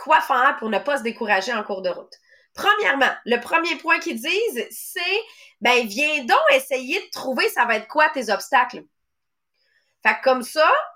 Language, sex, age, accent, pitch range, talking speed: English, female, 30-49, Canadian, 245-330 Hz, 185 wpm